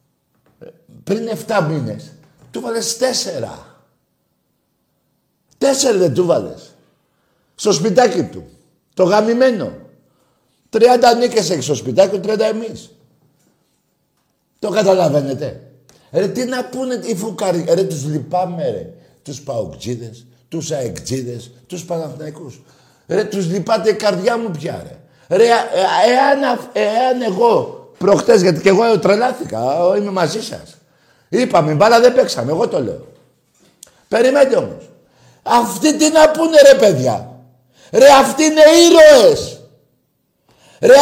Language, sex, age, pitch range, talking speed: Greek, male, 50-69, 180-280 Hz, 115 wpm